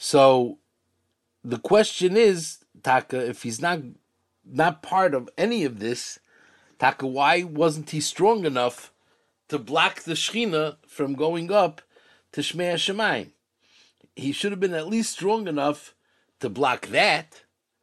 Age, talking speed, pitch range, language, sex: 50-69, 135 wpm, 125-160 Hz, English, male